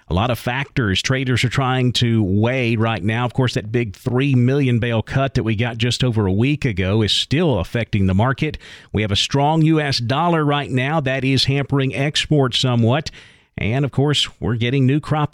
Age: 50-69